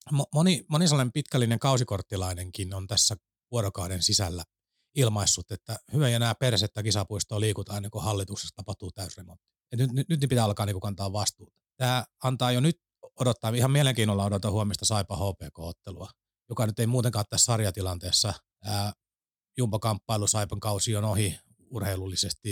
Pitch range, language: 100-125 Hz, Finnish